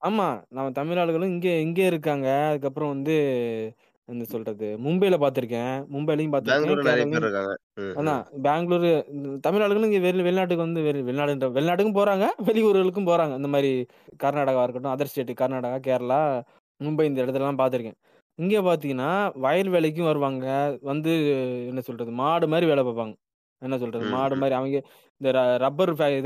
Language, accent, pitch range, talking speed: Tamil, native, 130-165 Hz, 135 wpm